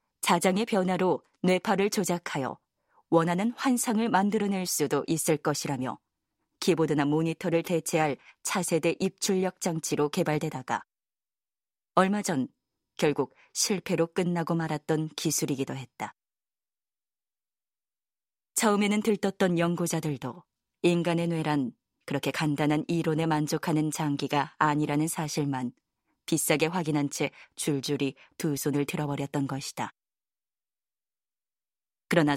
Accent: native